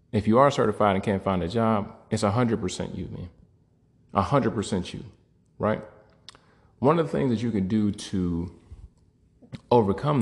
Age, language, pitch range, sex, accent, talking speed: 30-49, English, 95-115 Hz, male, American, 175 wpm